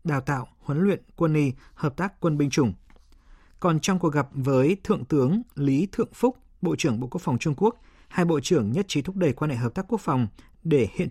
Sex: male